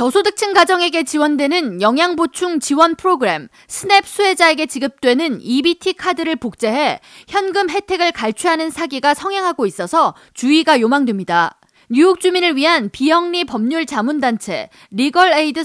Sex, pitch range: female, 245-340 Hz